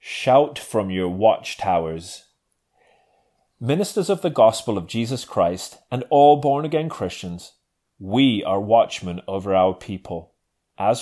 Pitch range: 95-145 Hz